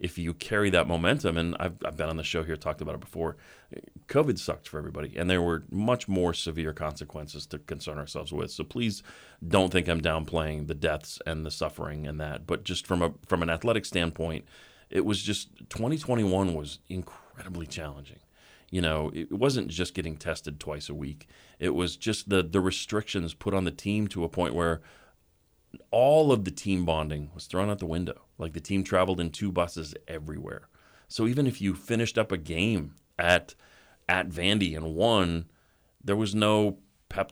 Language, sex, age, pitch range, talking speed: English, male, 30-49, 80-95 Hz, 190 wpm